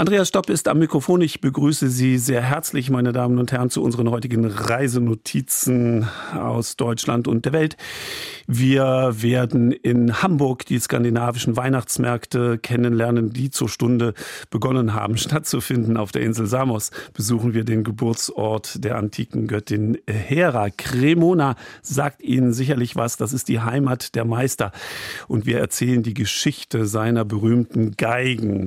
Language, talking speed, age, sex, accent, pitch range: German, 140 wpm, 50-69, male, German, 110-130 Hz